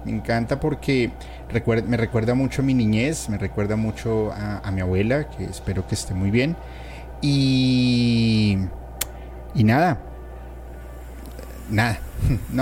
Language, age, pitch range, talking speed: Spanish, 30-49, 100-130 Hz, 130 wpm